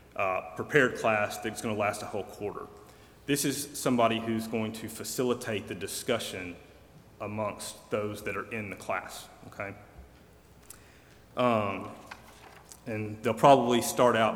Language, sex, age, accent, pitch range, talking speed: English, male, 30-49, American, 105-115 Hz, 140 wpm